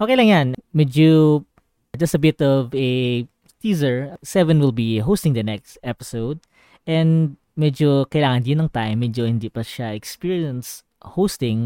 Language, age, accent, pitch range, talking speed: Filipino, 20-39, native, 115-150 Hz, 150 wpm